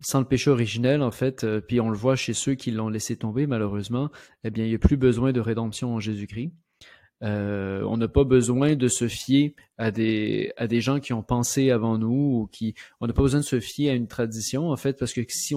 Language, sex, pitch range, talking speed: French, male, 110-135 Hz, 245 wpm